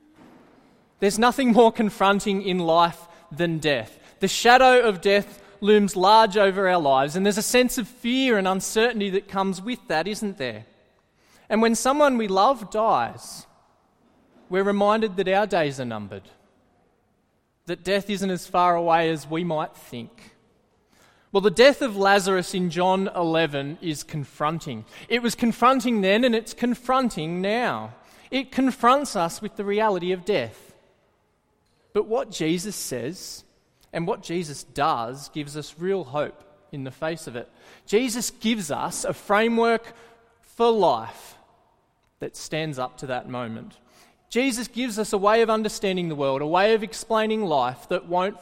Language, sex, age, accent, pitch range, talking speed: English, male, 20-39, Australian, 155-220 Hz, 155 wpm